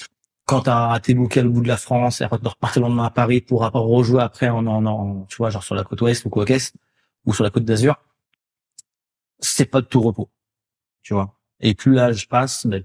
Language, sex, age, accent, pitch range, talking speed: French, male, 30-49, French, 110-125 Hz, 240 wpm